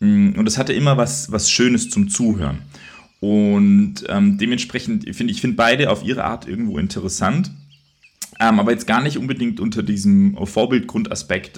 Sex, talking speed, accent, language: male, 155 wpm, German, German